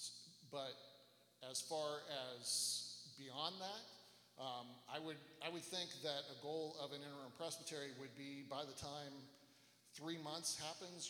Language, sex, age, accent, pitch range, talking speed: English, male, 40-59, American, 135-155 Hz, 145 wpm